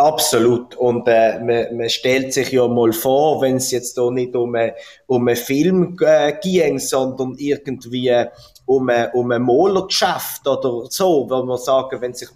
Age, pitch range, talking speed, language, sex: 30-49, 130-155 Hz, 165 wpm, German, male